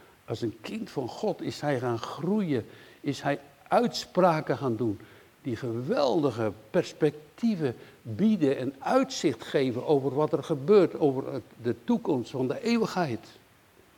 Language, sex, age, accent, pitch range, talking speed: Dutch, male, 60-79, Dutch, 115-165 Hz, 135 wpm